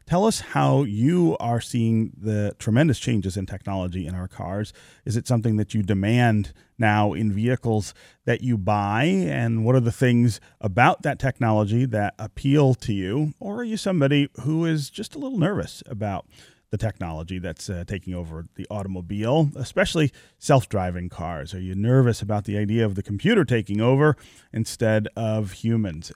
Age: 40-59